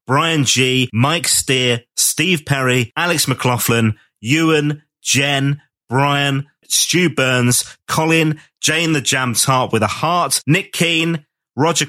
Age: 30-49